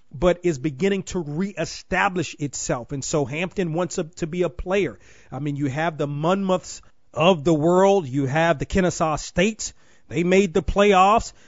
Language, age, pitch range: English, 40-59, 150-185 Hz